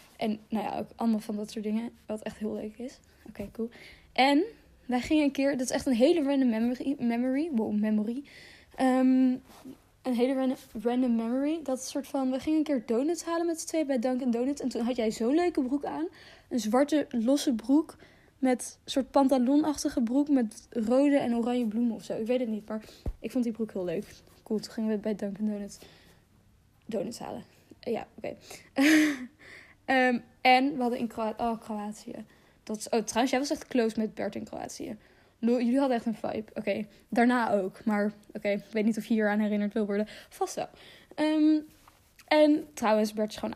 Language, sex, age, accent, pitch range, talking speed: Dutch, female, 10-29, Dutch, 220-275 Hz, 210 wpm